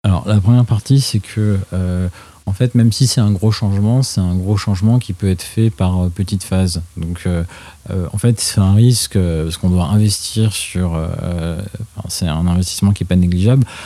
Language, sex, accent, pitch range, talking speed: French, male, French, 95-110 Hz, 215 wpm